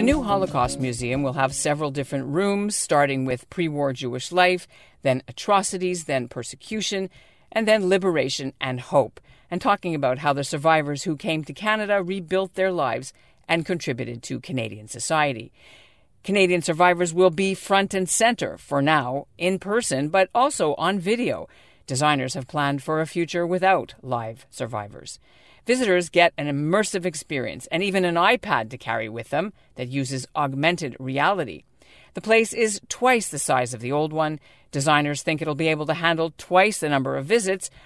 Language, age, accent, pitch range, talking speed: English, 50-69, American, 140-195 Hz, 165 wpm